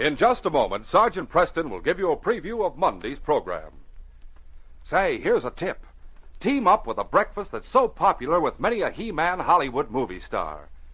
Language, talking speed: English, 180 wpm